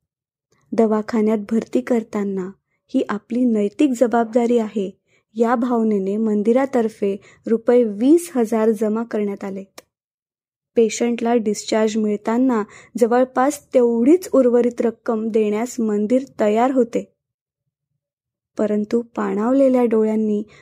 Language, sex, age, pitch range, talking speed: Marathi, female, 20-39, 215-255 Hz, 90 wpm